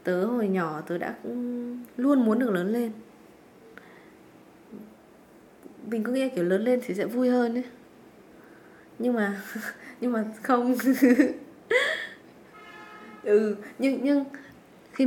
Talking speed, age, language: 125 wpm, 20-39, Vietnamese